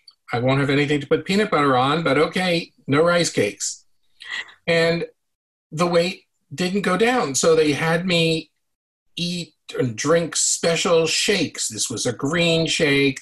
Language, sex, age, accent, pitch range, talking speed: English, male, 50-69, American, 135-165 Hz, 155 wpm